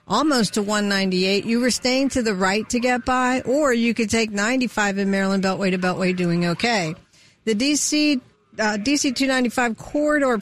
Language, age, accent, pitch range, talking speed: English, 50-69, American, 195-250 Hz, 175 wpm